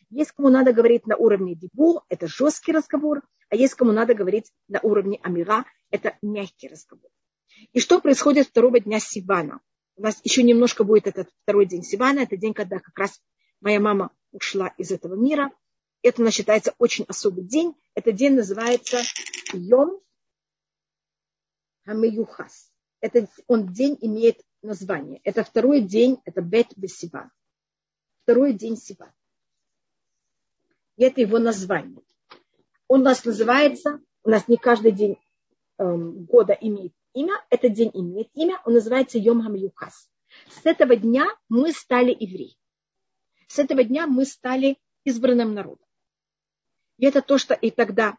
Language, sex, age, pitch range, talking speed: Russian, female, 40-59, 205-265 Hz, 140 wpm